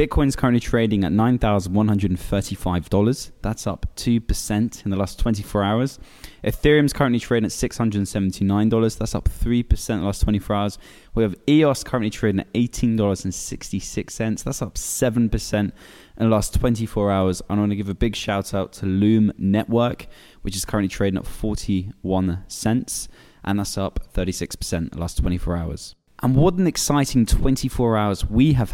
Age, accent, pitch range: 10-29, British, 100-125 Hz